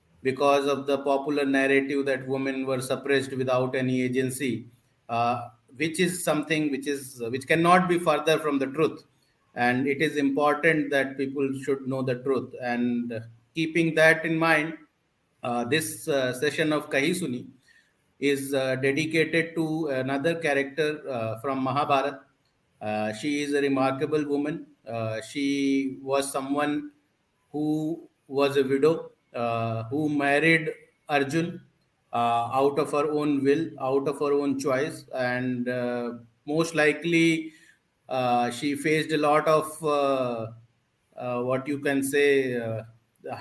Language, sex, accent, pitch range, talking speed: Hindi, male, native, 135-155 Hz, 140 wpm